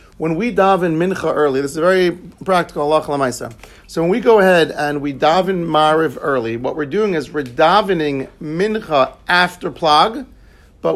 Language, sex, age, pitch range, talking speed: English, male, 50-69, 145-195 Hz, 165 wpm